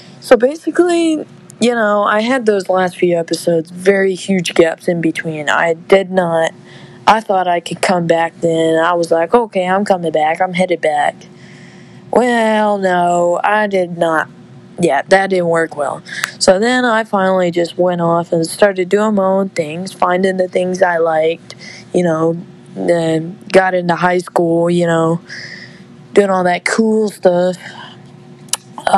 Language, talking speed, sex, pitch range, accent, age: English, 160 wpm, female, 170-200 Hz, American, 20-39